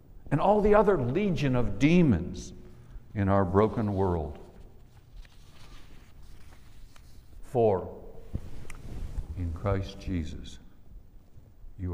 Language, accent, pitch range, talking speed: English, American, 85-110 Hz, 80 wpm